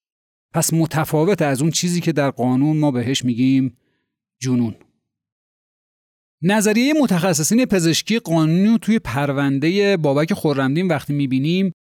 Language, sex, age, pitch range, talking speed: Persian, male, 30-49, 135-175 Hz, 115 wpm